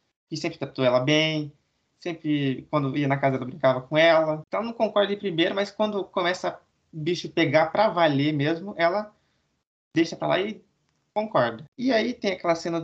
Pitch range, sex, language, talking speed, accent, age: 145-195 Hz, male, Portuguese, 180 wpm, Brazilian, 20-39